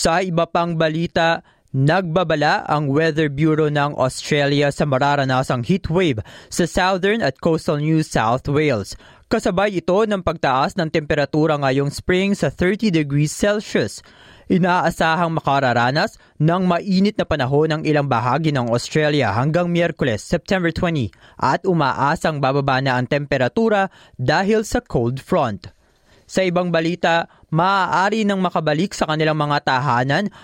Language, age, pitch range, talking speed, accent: Filipino, 20-39, 140-175 Hz, 130 wpm, native